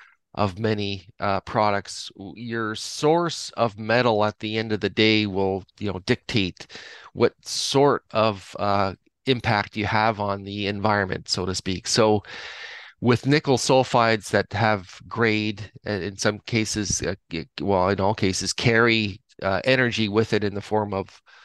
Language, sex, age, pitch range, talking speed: English, male, 30-49, 100-115 Hz, 150 wpm